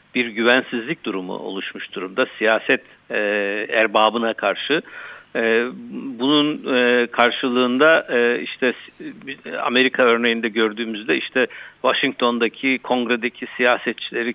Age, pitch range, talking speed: 60-79, 110-125 Hz, 90 wpm